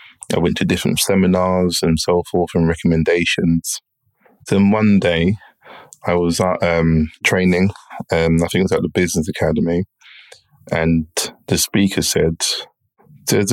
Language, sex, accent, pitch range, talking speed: English, male, British, 85-100 Hz, 140 wpm